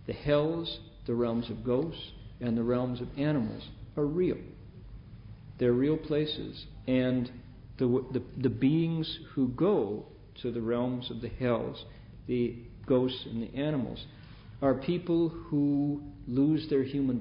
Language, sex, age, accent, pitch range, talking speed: English, male, 50-69, American, 115-140 Hz, 135 wpm